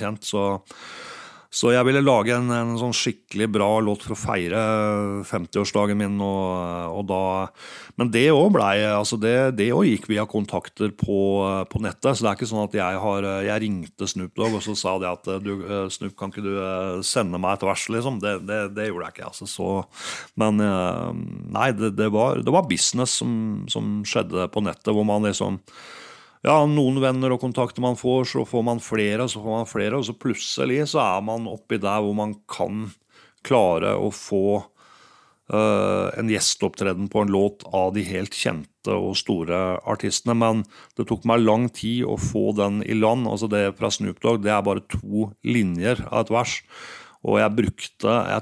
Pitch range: 100-110 Hz